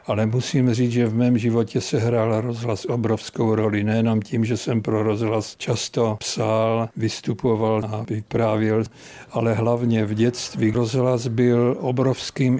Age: 60-79